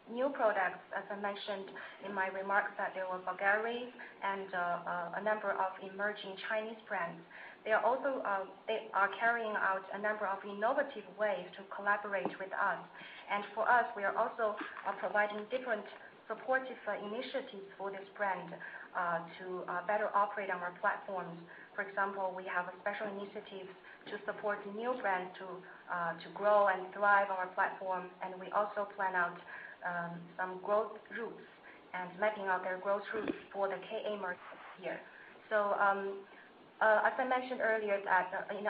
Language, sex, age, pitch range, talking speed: English, female, 30-49, 185-210 Hz, 170 wpm